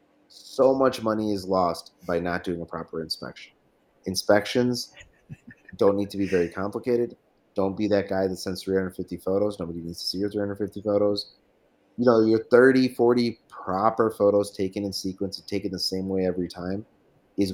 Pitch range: 90-105 Hz